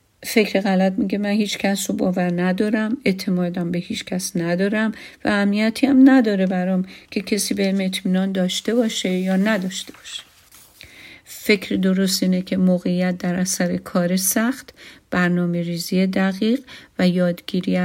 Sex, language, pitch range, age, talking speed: female, Persian, 180-220 Hz, 50-69, 140 wpm